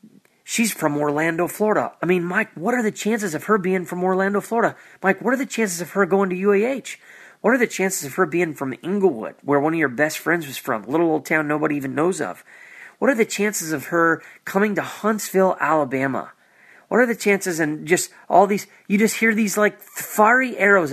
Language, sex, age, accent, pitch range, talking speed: English, male, 30-49, American, 155-215 Hz, 220 wpm